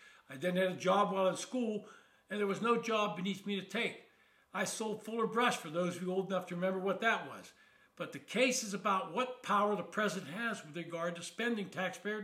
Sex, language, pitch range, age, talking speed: male, English, 185-235 Hz, 60-79, 230 wpm